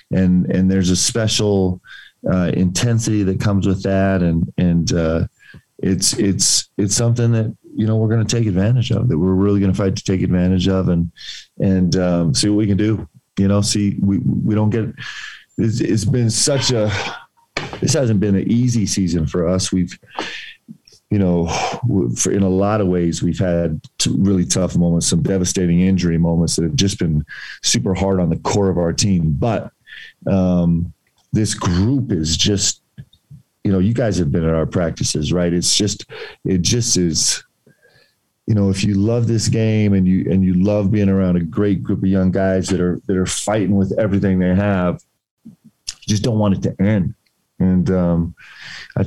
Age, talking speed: 40-59, 190 wpm